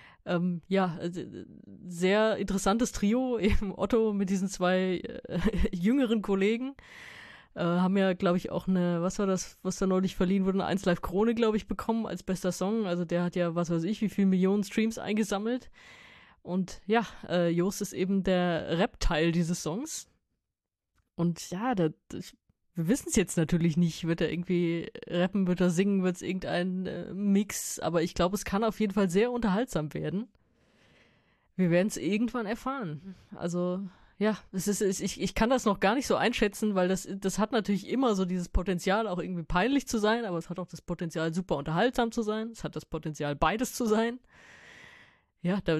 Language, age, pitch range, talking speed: German, 20-39, 175-215 Hz, 180 wpm